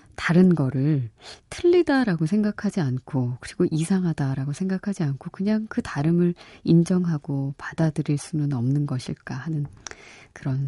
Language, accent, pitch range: Korean, native, 140-190 Hz